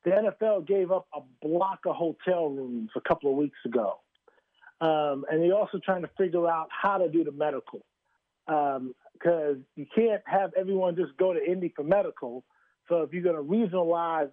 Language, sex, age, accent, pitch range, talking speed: English, male, 40-59, American, 155-180 Hz, 190 wpm